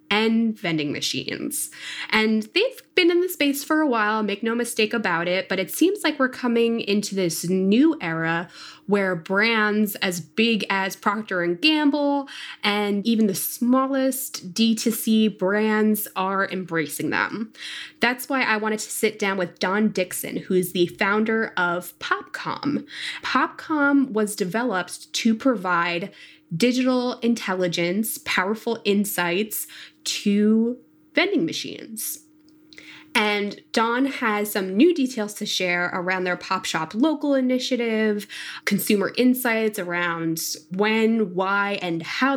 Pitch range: 185-240 Hz